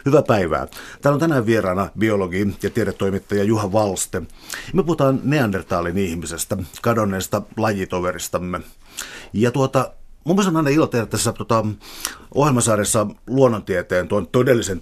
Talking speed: 120 wpm